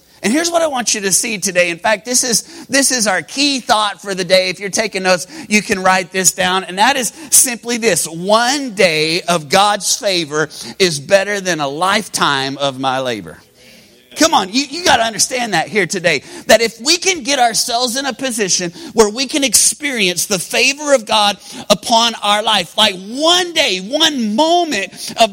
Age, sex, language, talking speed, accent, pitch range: 30-49, male, English, 200 wpm, American, 190-245 Hz